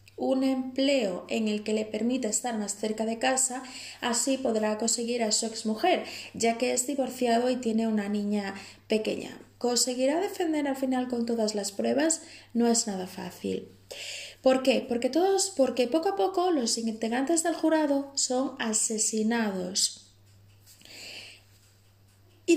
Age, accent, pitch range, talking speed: 20-39, Spanish, 215-270 Hz, 145 wpm